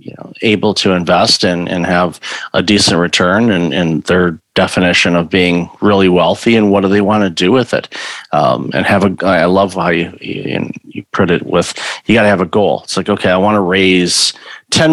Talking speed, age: 215 wpm, 40-59